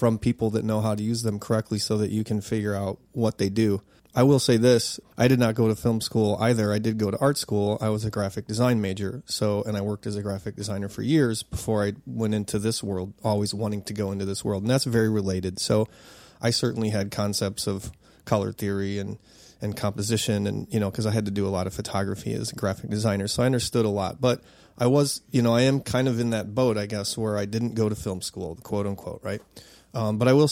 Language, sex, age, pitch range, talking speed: English, male, 30-49, 105-120 Hz, 255 wpm